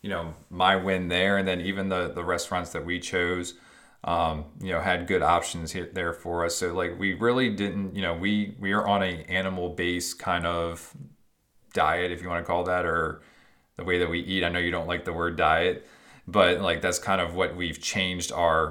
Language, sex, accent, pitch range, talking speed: English, male, American, 85-95 Hz, 220 wpm